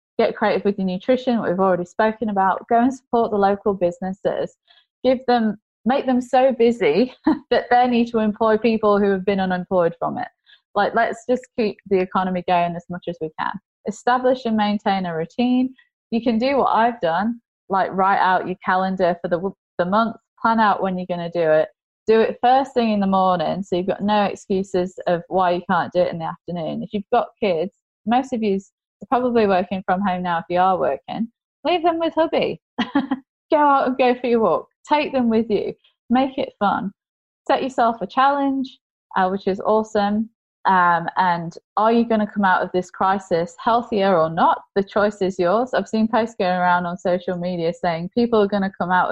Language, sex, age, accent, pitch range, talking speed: English, female, 20-39, British, 180-240 Hz, 210 wpm